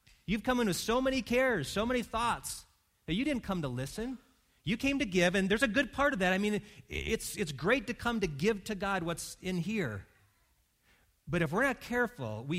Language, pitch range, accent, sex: English, 140-210 Hz, American, male